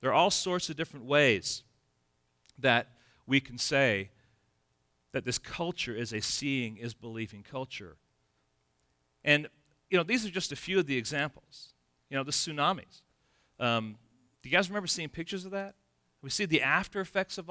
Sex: male